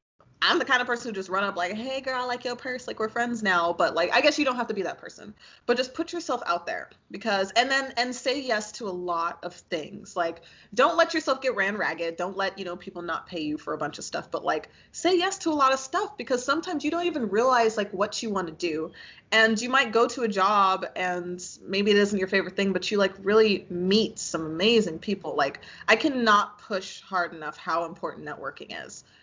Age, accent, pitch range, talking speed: 20-39, American, 175-250 Hz, 245 wpm